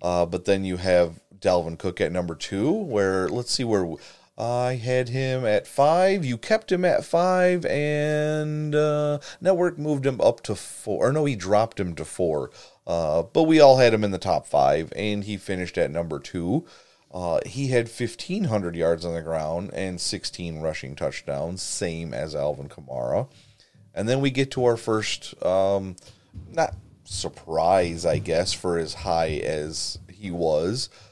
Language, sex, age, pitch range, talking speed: English, male, 30-49, 90-135 Hz, 175 wpm